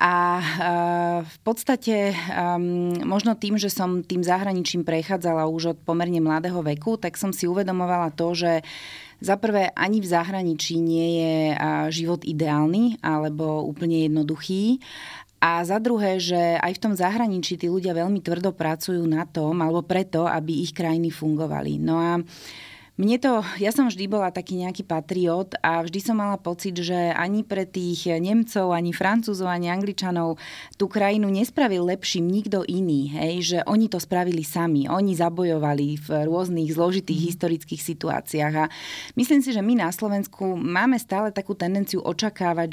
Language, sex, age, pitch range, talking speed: Slovak, female, 30-49, 165-190 Hz, 155 wpm